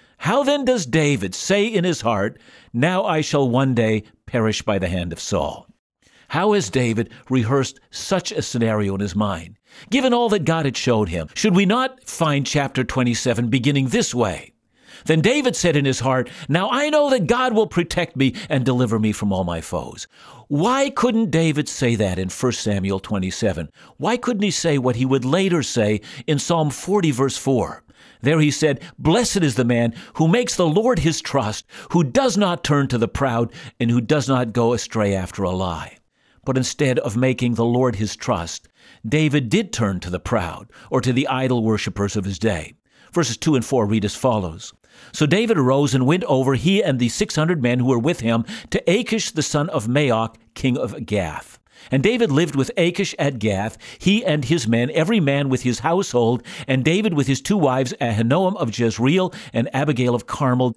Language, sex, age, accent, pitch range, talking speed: English, male, 60-79, American, 115-165 Hz, 195 wpm